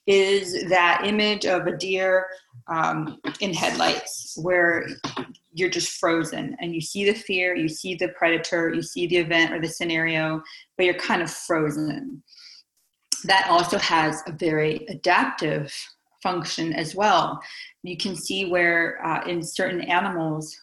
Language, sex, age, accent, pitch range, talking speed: English, female, 30-49, American, 165-200 Hz, 150 wpm